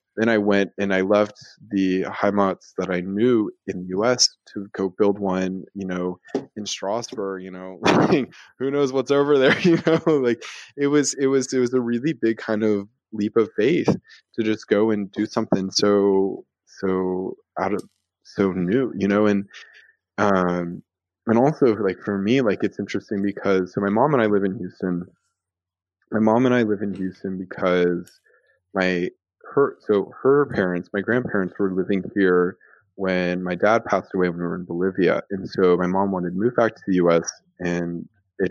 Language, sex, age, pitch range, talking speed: English, male, 20-39, 90-110 Hz, 185 wpm